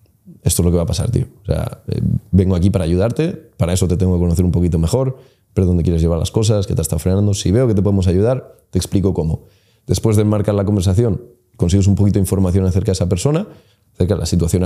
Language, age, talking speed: Spanish, 20-39, 250 wpm